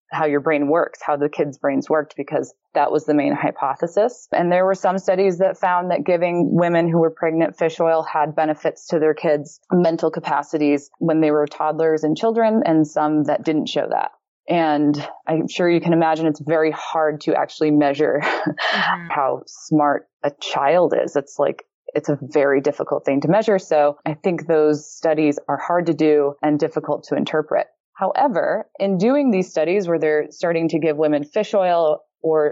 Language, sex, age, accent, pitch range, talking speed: English, female, 20-39, American, 150-170 Hz, 190 wpm